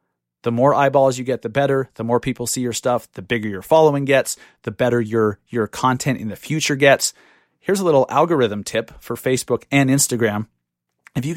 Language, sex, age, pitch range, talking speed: English, male, 30-49, 120-140 Hz, 200 wpm